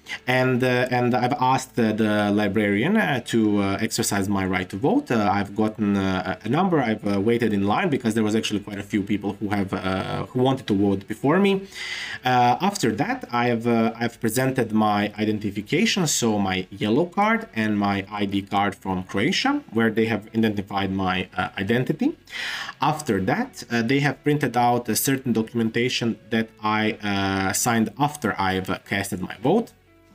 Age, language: 20-39, English